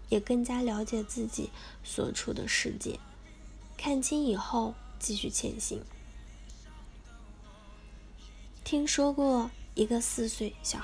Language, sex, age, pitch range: Chinese, female, 10-29, 215-270 Hz